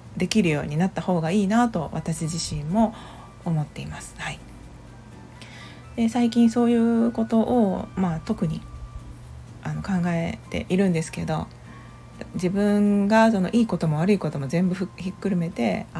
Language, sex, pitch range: Japanese, female, 155-225 Hz